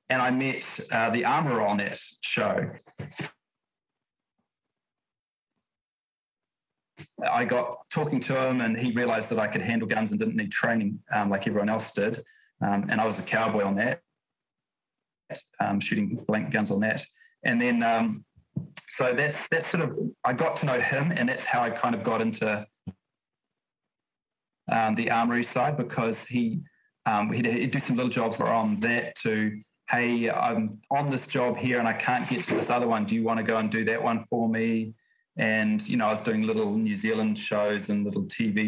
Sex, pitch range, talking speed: male, 110-170 Hz, 185 wpm